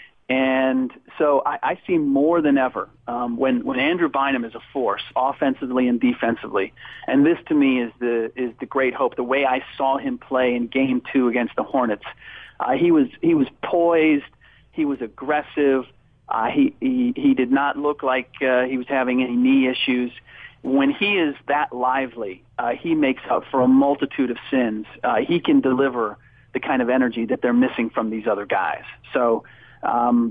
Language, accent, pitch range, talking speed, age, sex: English, American, 120-140 Hz, 190 wpm, 40-59, male